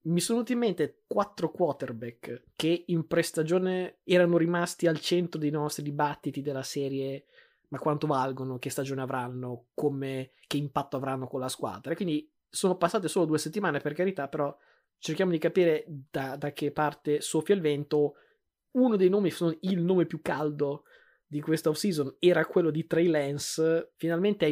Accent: native